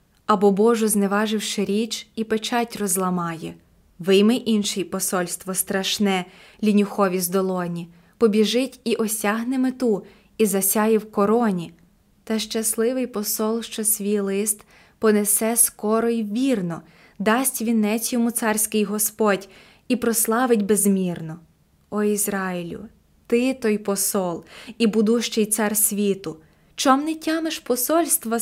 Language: Ukrainian